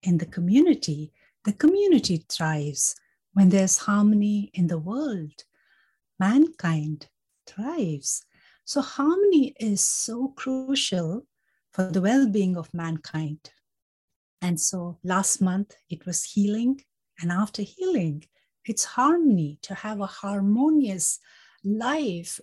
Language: English